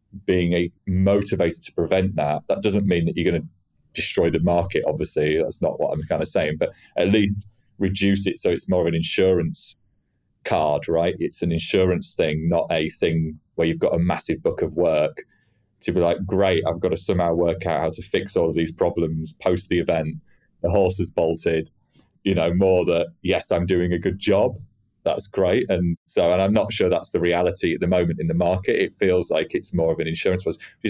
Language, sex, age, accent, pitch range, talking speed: English, male, 30-49, British, 85-100 Hz, 220 wpm